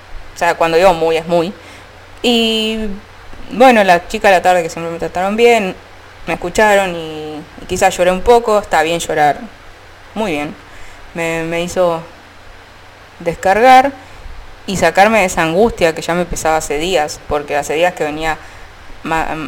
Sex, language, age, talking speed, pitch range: female, Italian, 20-39, 165 wpm, 150-195 Hz